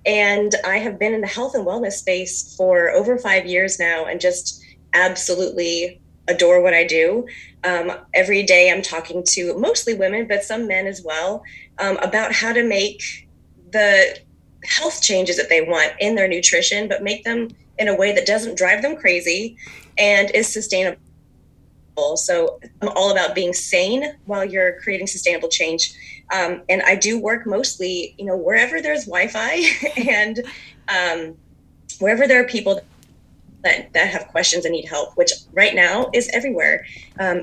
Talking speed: 170 wpm